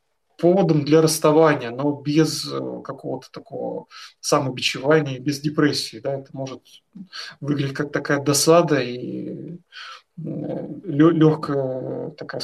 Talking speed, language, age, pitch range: 100 wpm, Russian, 20-39, 145-170 Hz